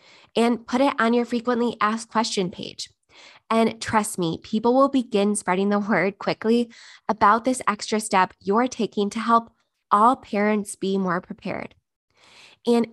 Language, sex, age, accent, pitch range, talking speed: English, female, 20-39, American, 200-240 Hz, 155 wpm